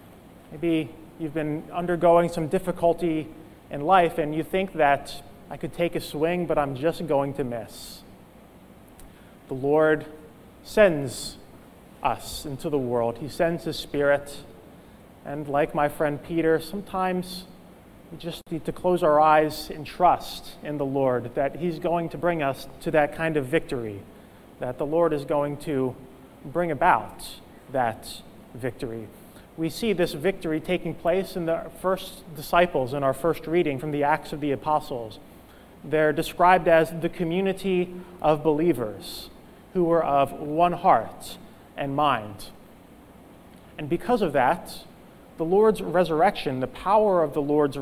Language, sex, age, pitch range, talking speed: English, male, 30-49, 145-175 Hz, 150 wpm